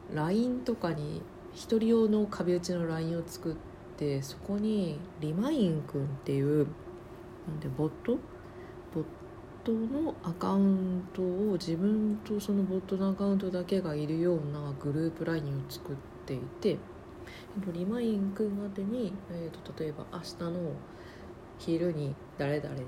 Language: Japanese